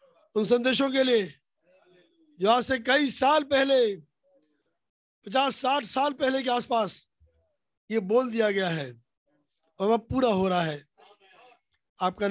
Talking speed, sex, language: 120 wpm, male, Hindi